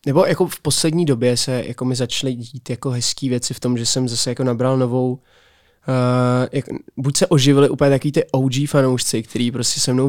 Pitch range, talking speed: 120-135 Hz, 210 wpm